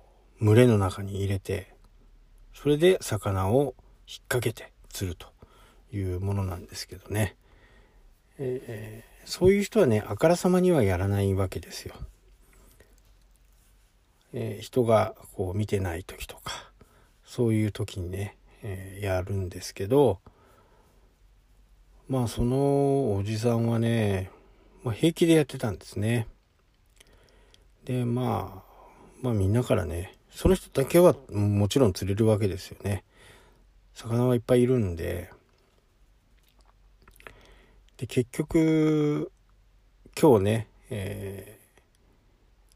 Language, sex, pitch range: Japanese, male, 95-125 Hz